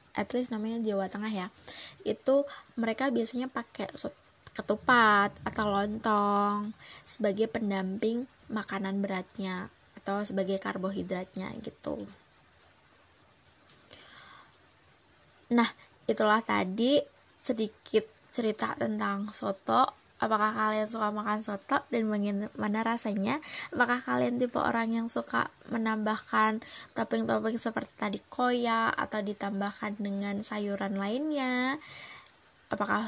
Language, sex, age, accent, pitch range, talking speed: Indonesian, female, 20-39, native, 205-235 Hz, 95 wpm